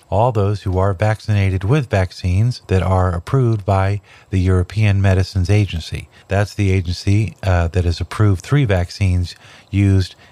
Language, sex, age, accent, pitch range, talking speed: English, male, 50-69, American, 95-115 Hz, 145 wpm